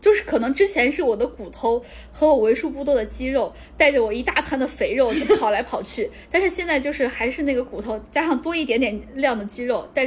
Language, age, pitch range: Chinese, 10-29, 215-300 Hz